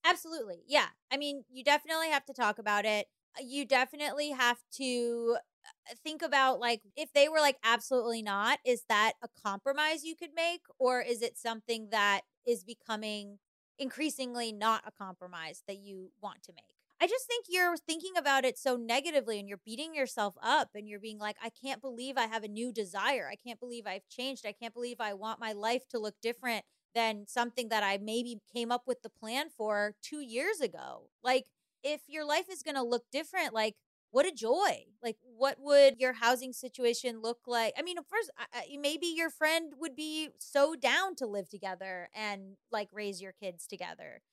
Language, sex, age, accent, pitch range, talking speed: English, female, 20-39, American, 215-280 Hz, 195 wpm